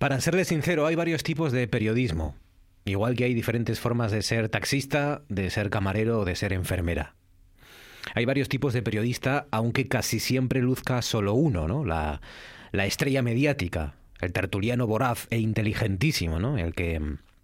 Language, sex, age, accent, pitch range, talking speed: Spanish, male, 30-49, Spanish, 90-120 Hz, 165 wpm